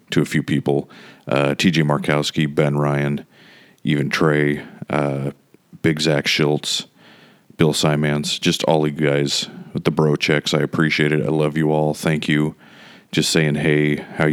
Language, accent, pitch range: English, American, 70-75 Hz